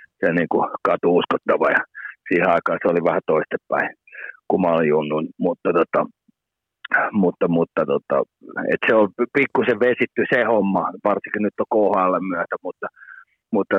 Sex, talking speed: male, 150 wpm